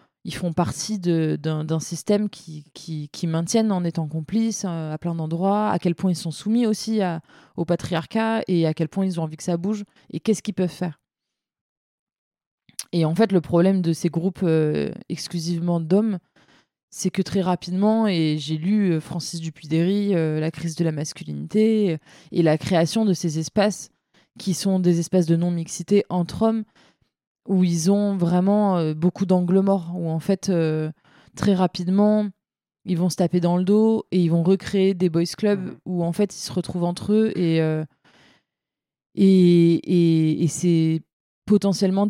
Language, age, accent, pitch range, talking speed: French, 20-39, French, 160-195 Hz, 180 wpm